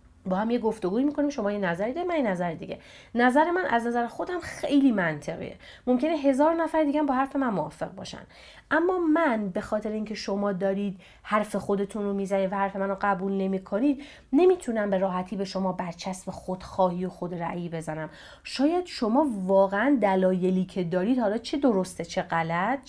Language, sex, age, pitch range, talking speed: Persian, female, 30-49, 175-265 Hz, 180 wpm